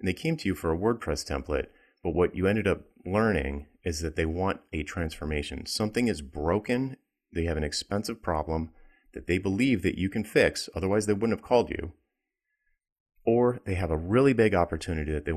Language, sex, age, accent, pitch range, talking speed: English, male, 30-49, American, 75-95 Hz, 200 wpm